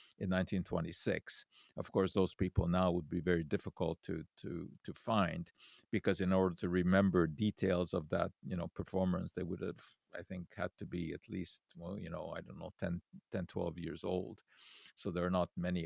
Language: English